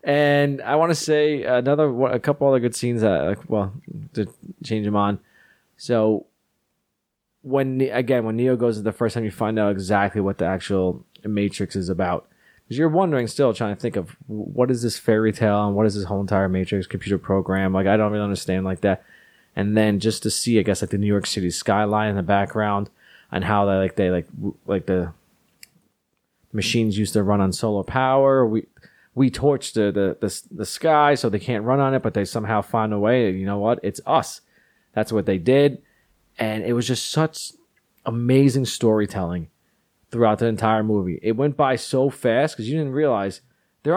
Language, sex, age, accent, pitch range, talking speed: English, male, 20-39, American, 100-135 Hz, 200 wpm